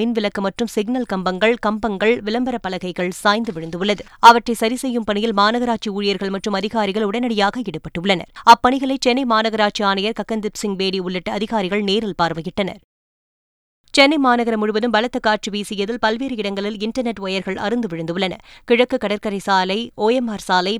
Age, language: 20-39, Tamil